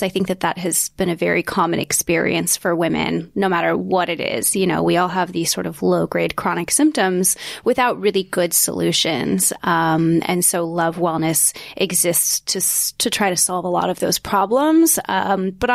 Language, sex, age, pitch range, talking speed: English, female, 20-39, 175-200 Hz, 190 wpm